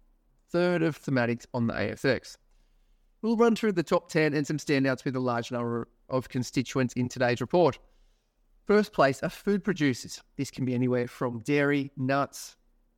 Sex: male